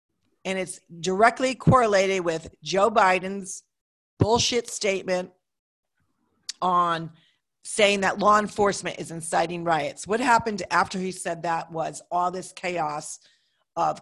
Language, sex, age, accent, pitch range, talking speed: English, female, 40-59, American, 165-195 Hz, 120 wpm